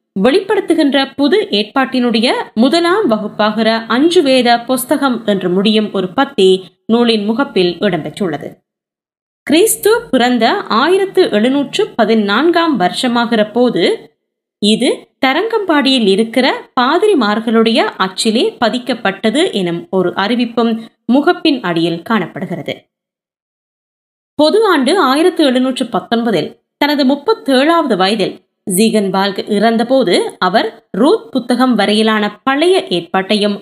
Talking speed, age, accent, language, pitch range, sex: 90 wpm, 20-39, native, Tamil, 210-295 Hz, female